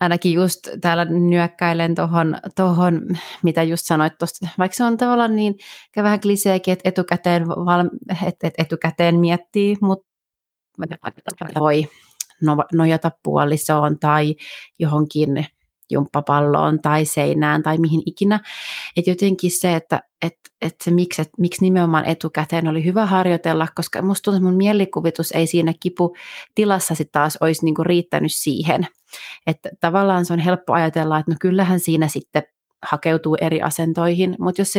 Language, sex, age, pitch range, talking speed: Finnish, female, 30-49, 160-185 Hz, 140 wpm